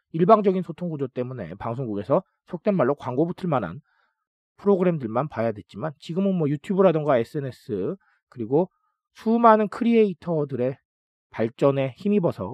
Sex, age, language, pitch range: male, 40-59, Korean, 125-195 Hz